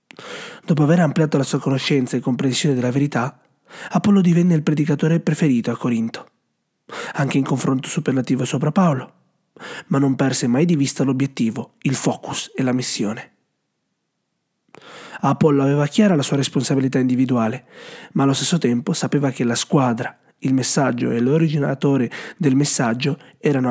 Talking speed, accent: 145 wpm, native